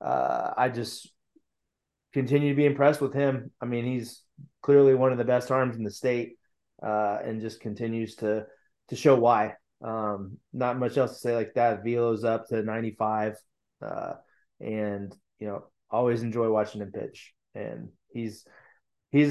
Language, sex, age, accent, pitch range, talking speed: English, male, 20-39, American, 110-130 Hz, 165 wpm